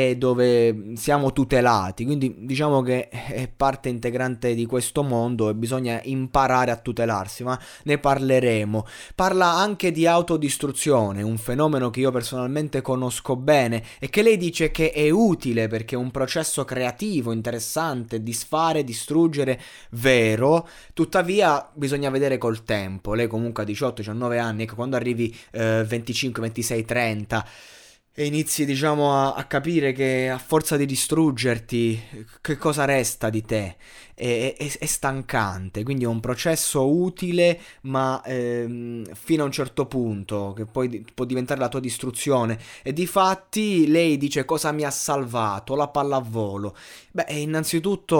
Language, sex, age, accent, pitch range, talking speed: Italian, male, 20-39, native, 115-145 Hz, 150 wpm